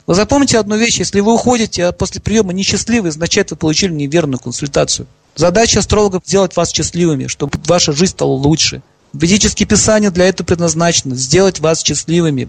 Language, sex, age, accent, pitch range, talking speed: Russian, male, 40-59, native, 170-215 Hz, 165 wpm